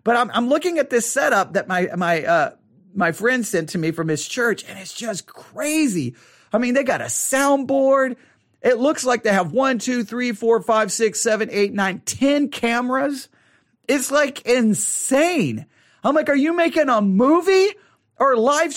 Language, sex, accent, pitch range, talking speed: English, male, American, 165-270 Hz, 180 wpm